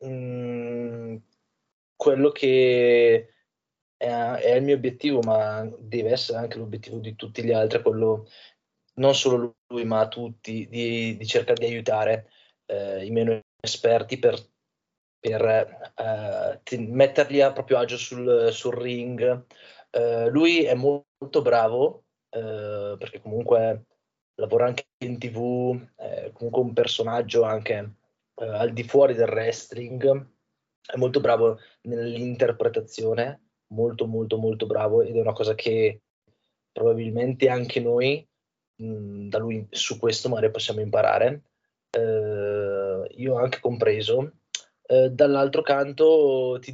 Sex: male